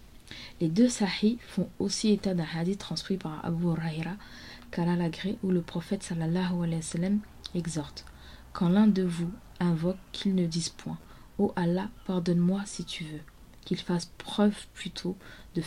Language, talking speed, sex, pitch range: French, 155 wpm, female, 165-195 Hz